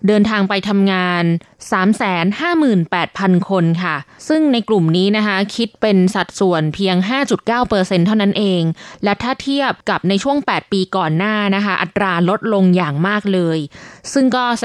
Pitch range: 180-225 Hz